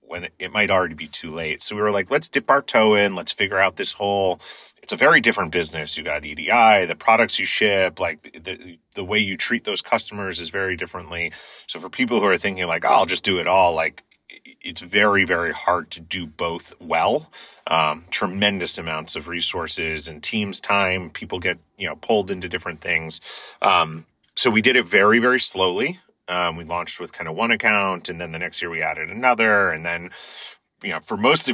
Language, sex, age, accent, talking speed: English, male, 30-49, American, 210 wpm